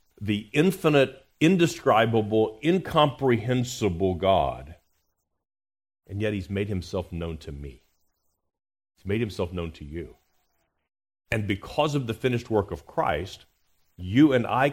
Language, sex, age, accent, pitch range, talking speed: English, male, 50-69, American, 85-120 Hz, 120 wpm